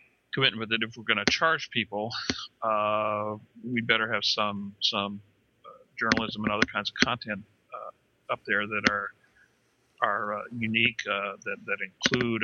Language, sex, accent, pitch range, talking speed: English, male, American, 105-120 Hz, 165 wpm